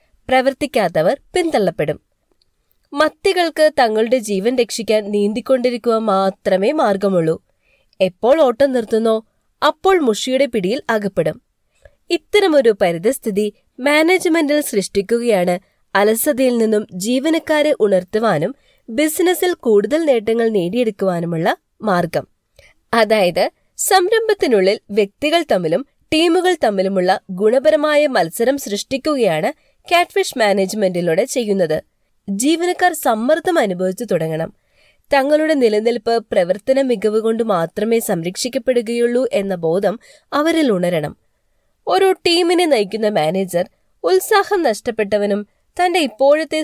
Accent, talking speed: native, 80 wpm